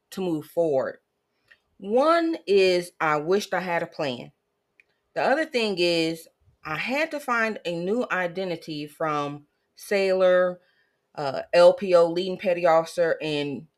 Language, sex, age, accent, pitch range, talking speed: English, female, 30-49, American, 160-210 Hz, 125 wpm